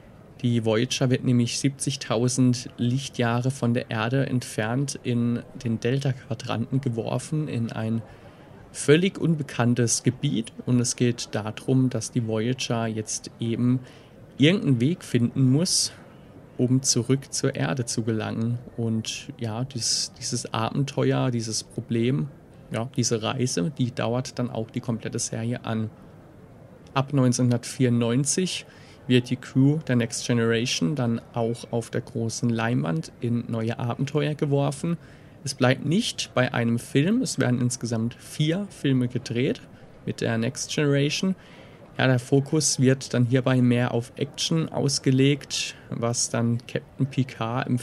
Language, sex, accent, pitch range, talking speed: German, male, German, 120-140 Hz, 130 wpm